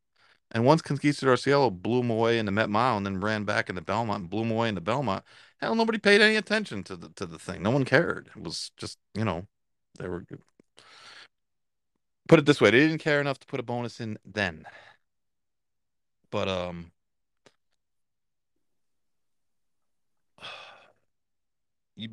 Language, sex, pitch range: English, male, 90-115 Hz